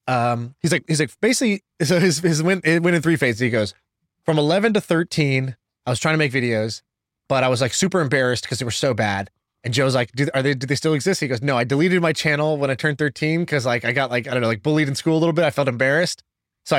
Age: 20-39